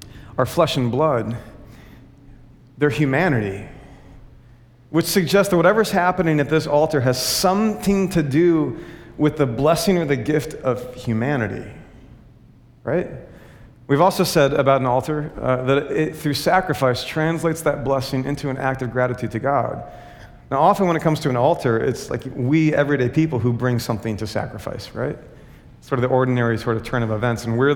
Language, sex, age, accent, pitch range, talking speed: English, male, 40-59, American, 125-165 Hz, 170 wpm